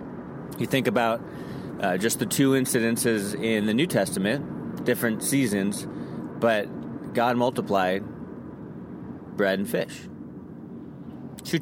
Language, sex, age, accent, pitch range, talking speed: English, male, 30-49, American, 100-125 Hz, 110 wpm